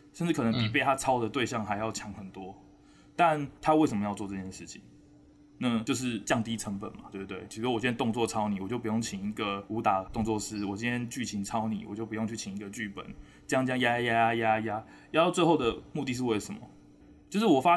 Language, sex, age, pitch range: Chinese, male, 20-39, 100-125 Hz